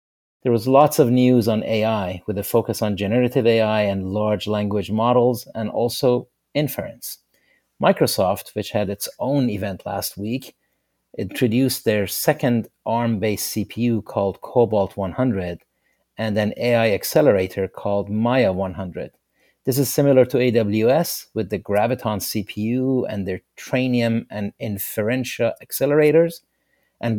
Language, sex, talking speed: English, male, 130 wpm